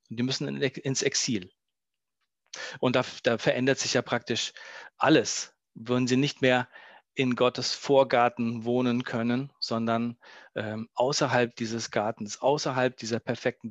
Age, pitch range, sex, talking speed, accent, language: 40-59, 125-165 Hz, male, 125 wpm, German, German